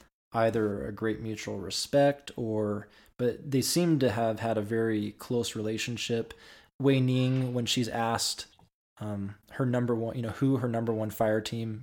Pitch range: 105-115 Hz